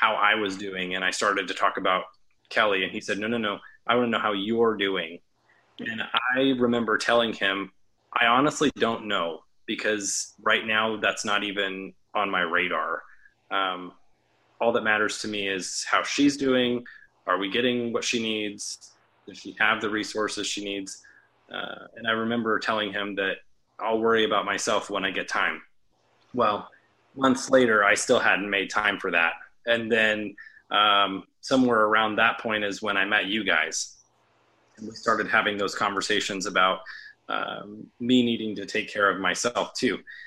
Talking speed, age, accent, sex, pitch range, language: 175 wpm, 20-39, American, male, 100-120 Hz, English